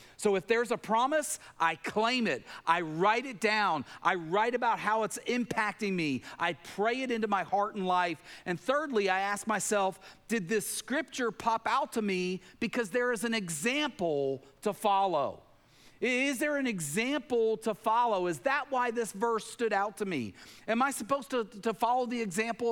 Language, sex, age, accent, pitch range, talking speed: English, male, 40-59, American, 180-240 Hz, 180 wpm